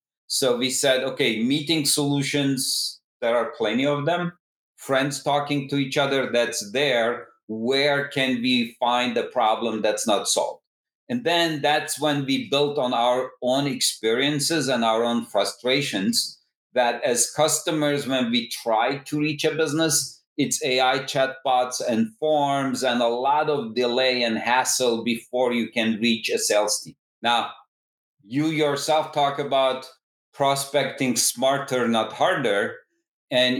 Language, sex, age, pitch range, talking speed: English, male, 40-59, 125-145 Hz, 145 wpm